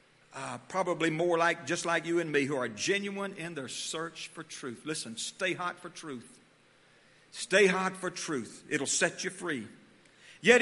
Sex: male